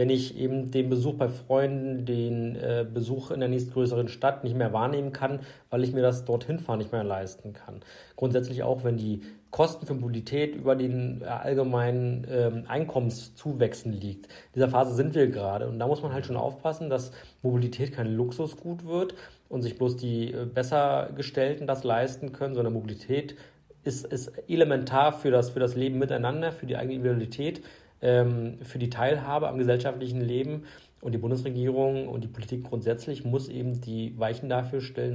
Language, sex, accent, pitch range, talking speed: German, male, German, 120-135 Hz, 175 wpm